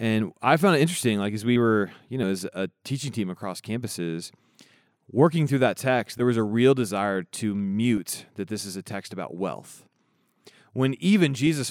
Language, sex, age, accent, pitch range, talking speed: English, male, 30-49, American, 95-125 Hz, 195 wpm